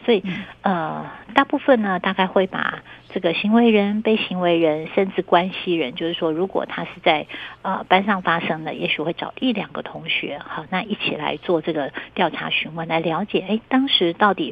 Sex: female